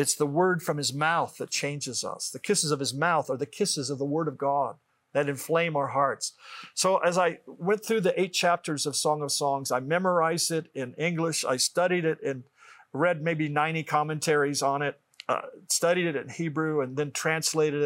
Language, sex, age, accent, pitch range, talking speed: English, male, 40-59, American, 140-180 Hz, 205 wpm